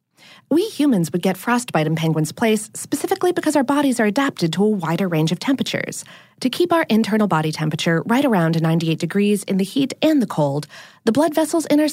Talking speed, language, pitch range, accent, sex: 205 wpm, English, 165-270 Hz, American, female